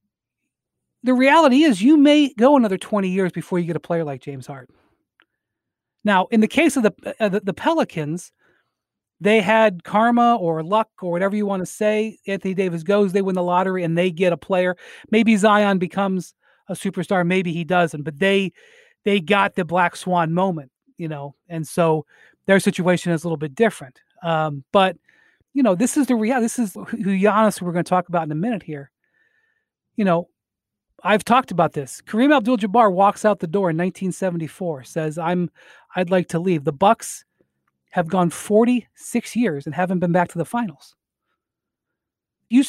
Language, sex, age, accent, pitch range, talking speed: English, male, 30-49, American, 170-220 Hz, 185 wpm